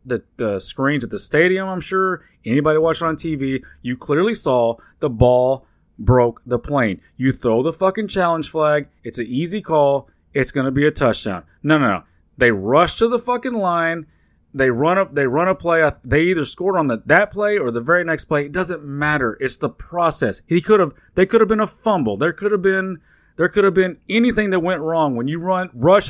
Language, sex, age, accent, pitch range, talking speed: English, male, 30-49, American, 130-195 Hz, 220 wpm